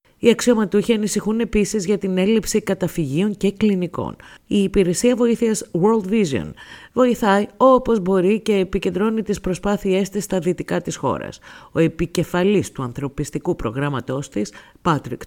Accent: native